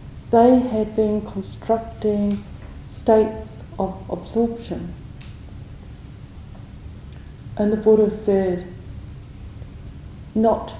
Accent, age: British, 40-59